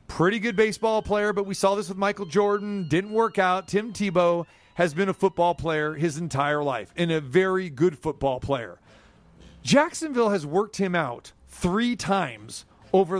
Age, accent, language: 40-59, American, English